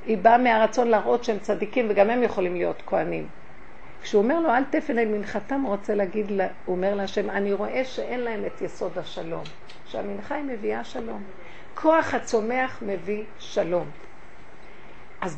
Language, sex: Hebrew, female